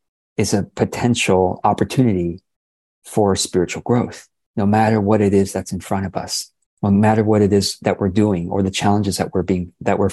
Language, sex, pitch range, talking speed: English, male, 100-125 Hz, 195 wpm